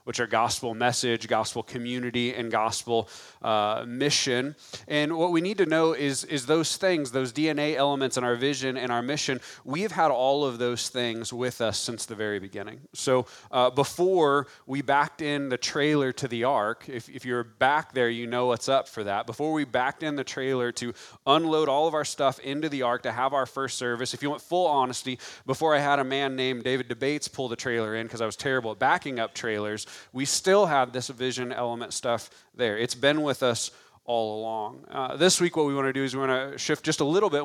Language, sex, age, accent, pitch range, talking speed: English, male, 30-49, American, 120-145 Hz, 225 wpm